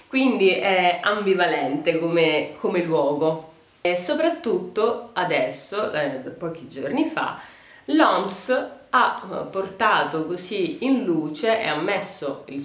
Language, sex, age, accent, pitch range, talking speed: Italian, female, 30-49, native, 155-225 Hz, 105 wpm